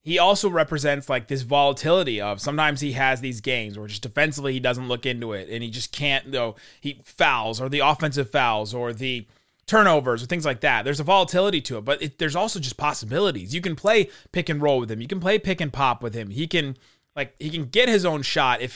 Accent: American